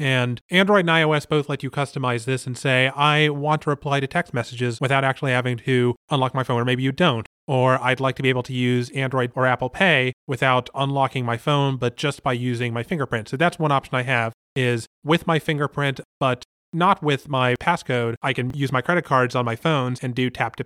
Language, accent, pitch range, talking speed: English, American, 125-150 Hz, 230 wpm